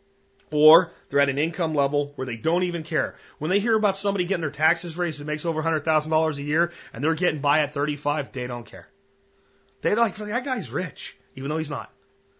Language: English